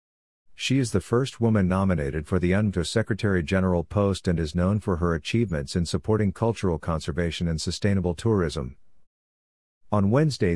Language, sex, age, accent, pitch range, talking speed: English, male, 50-69, American, 85-100 Hz, 150 wpm